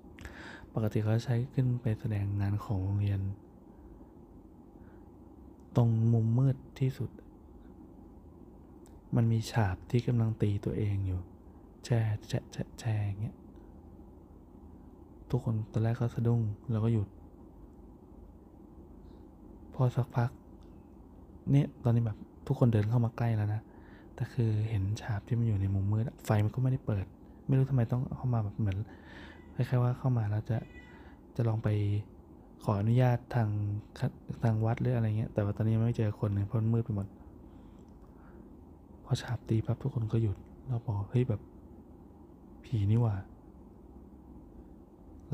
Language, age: Thai, 20-39